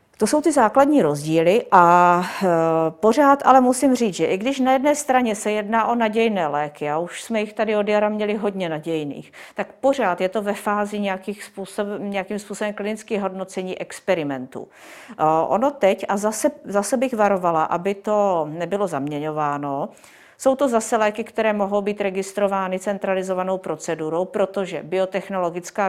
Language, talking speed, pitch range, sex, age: Czech, 150 wpm, 170-210 Hz, female, 40-59